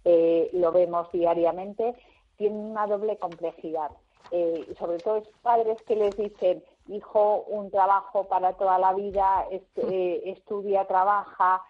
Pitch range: 170-215 Hz